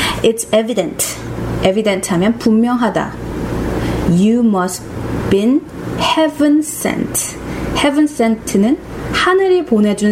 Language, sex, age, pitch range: Korean, female, 30-49, 190-260 Hz